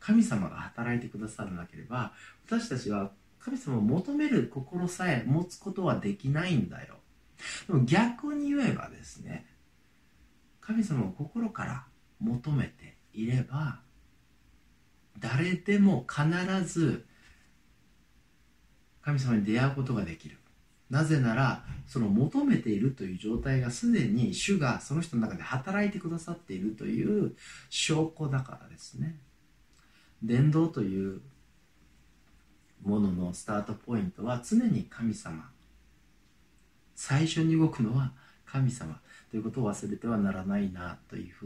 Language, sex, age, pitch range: Japanese, male, 40-59, 100-165 Hz